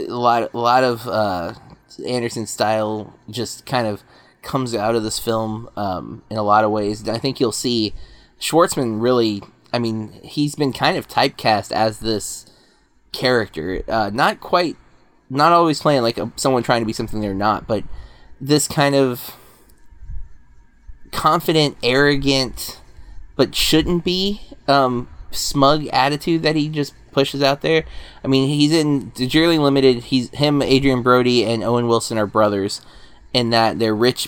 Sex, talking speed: male, 155 wpm